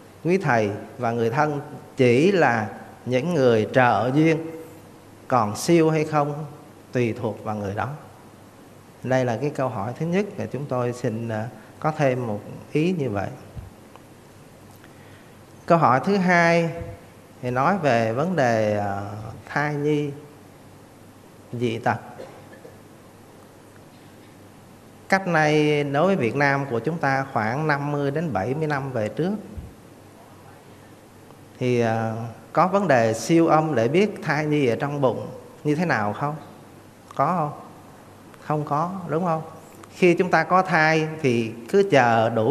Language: Vietnamese